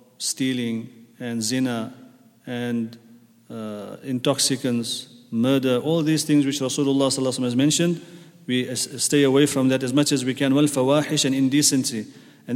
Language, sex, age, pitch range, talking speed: English, male, 40-59, 125-150 Hz, 140 wpm